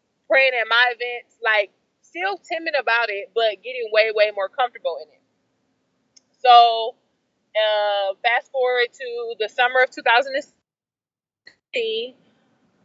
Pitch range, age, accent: 205-285 Hz, 20-39, American